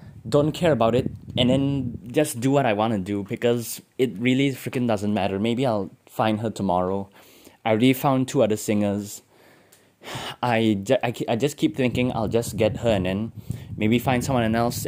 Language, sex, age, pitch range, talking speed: English, male, 20-39, 100-125 Hz, 185 wpm